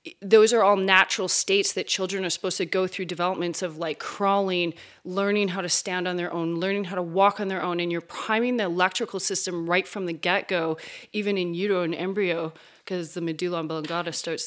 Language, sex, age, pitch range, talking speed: English, female, 30-49, 175-205 Hz, 205 wpm